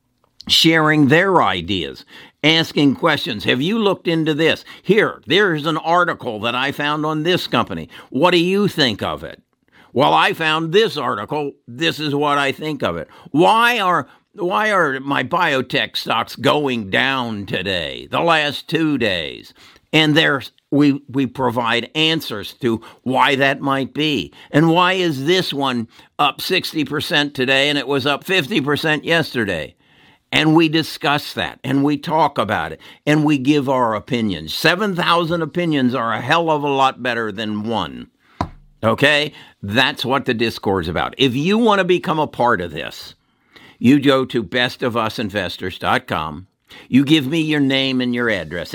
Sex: male